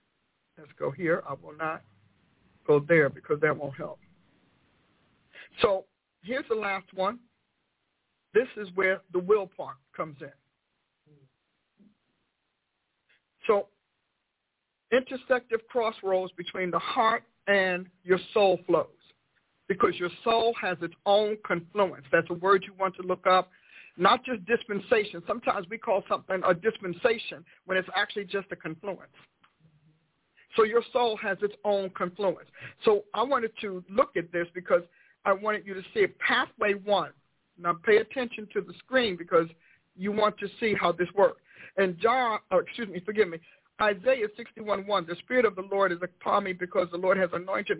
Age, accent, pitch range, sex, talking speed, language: 50-69, American, 180-225 Hz, male, 155 wpm, English